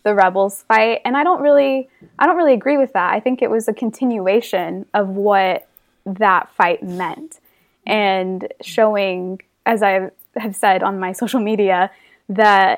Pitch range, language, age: 190-225 Hz, English, 20-39